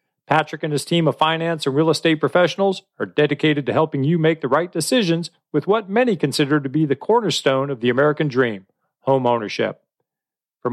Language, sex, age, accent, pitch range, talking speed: English, male, 40-59, American, 135-175 Hz, 190 wpm